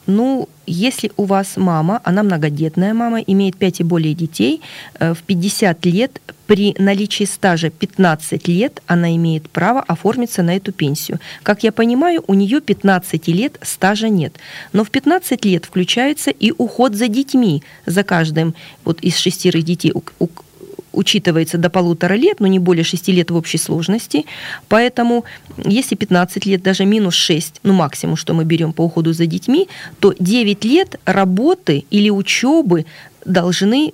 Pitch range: 175-215 Hz